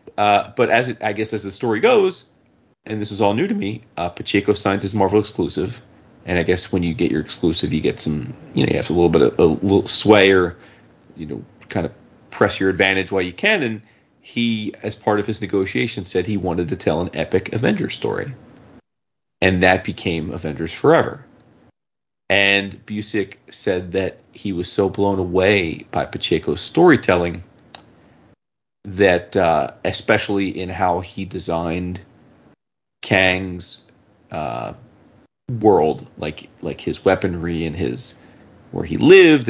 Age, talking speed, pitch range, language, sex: 30-49, 165 wpm, 90-105 Hz, English, male